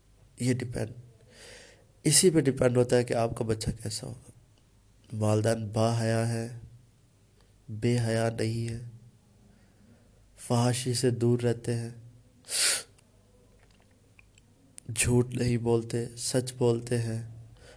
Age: 20-39